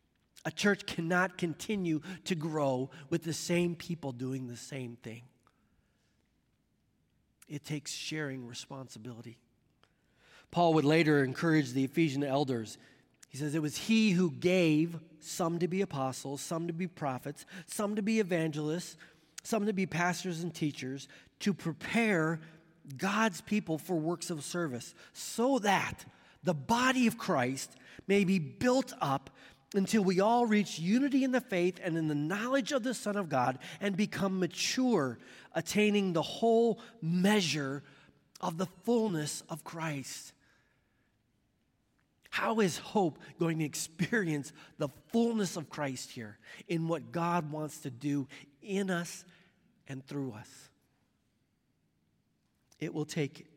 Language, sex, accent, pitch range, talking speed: English, male, American, 135-185 Hz, 135 wpm